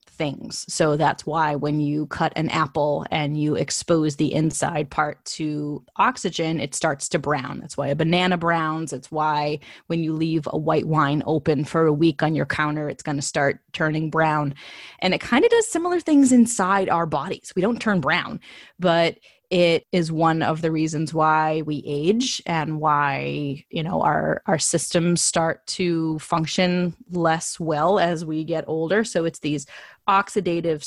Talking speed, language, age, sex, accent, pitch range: 175 wpm, English, 20-39, female, American, 155-190 Hz